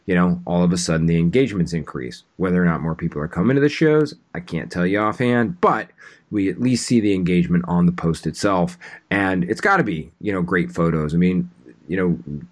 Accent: American